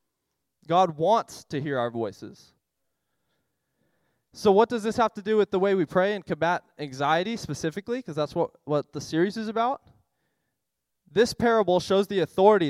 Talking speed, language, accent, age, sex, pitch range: 165 wpm, English, American, 20-39, male, 140-195 Hz